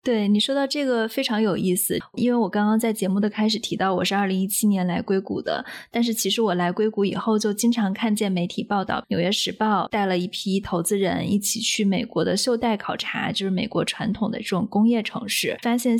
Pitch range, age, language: 200-235 Hz, 20-39, Chinese